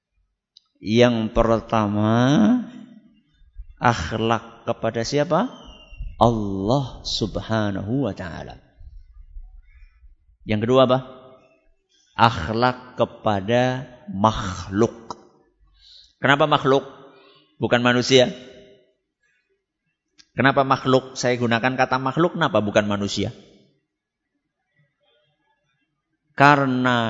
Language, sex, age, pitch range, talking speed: Malay, male, 50-69, 115-180 Hz, 65 wpm